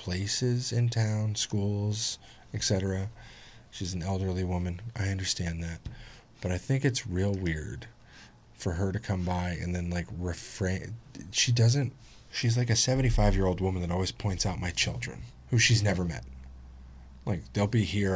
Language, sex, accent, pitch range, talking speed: English, male, American, 90-115 Hz, 165 wpm